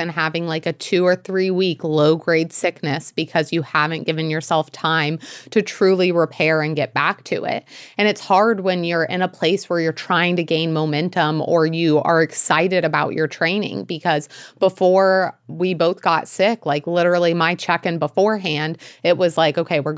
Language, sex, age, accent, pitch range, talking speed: English, female, 30-49, American, 155-180 Hz, 185 wpm